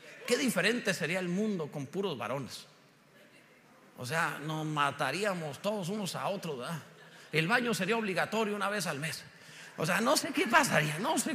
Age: 50-69